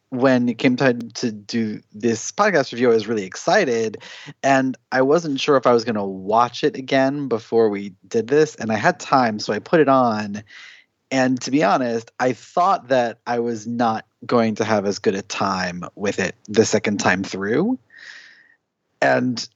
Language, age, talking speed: English, 30-49, 190 wpm